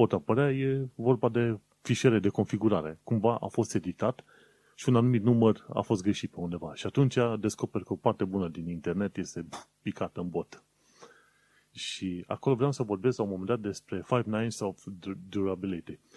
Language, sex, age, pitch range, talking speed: Romanian, male, 30-49, 95-120 Hz, 180 wpm